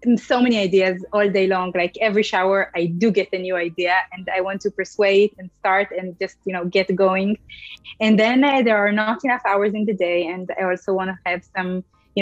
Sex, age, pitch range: female, 20-39, 185-220 Hz